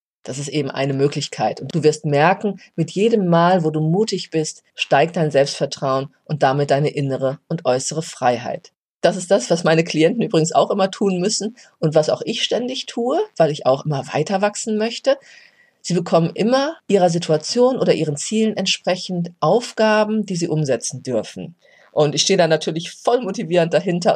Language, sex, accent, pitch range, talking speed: German, female, German, 145-180 Hz, 180 wpm